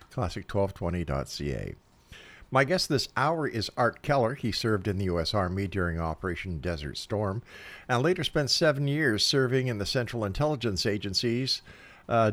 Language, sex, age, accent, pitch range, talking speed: English, male, 50-69, American, 95-125 Hz, 145 wpm